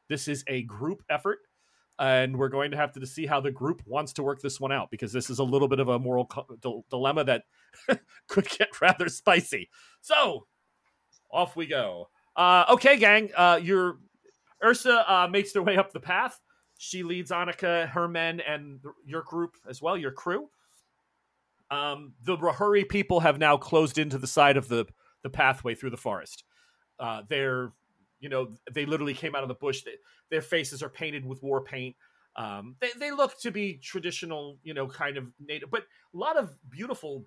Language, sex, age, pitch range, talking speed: English, male, 40-59, 135-180 Hz, 195 wpm